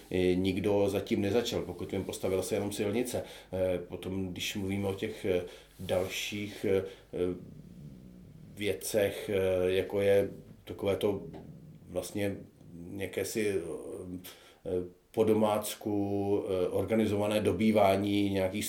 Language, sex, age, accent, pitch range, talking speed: Czech, male, 40-59, native, 95-110 Hz, 90 wpm